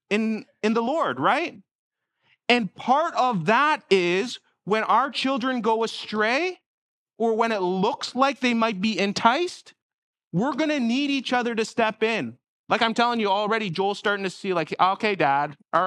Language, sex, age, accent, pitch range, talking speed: English, male, 30-49, American, 170-220 Hz, 175 wpm